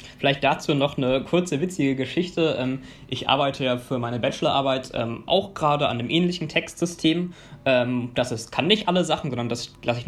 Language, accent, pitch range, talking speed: German, German, 125-165 Hz, 175 wpm